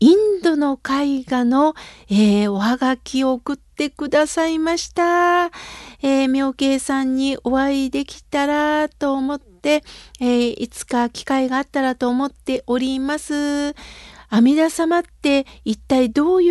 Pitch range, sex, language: 245-295 Hz, female, Japanese